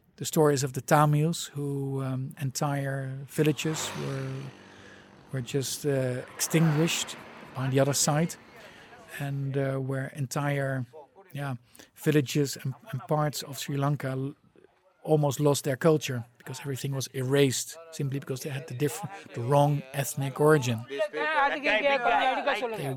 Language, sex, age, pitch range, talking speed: English, male, 50-69, 135-155 Hz, 125 wpm